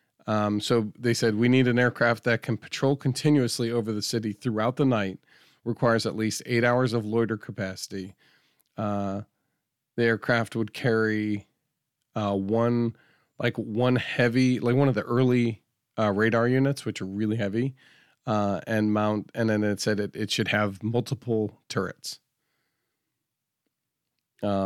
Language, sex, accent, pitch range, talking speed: English, male, American, 105-120 Hz, 150 wpm